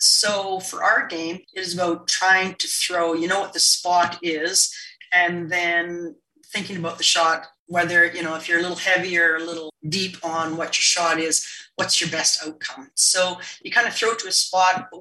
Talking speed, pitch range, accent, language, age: 205 wpm, 160-185 Hz, American, English, 40-59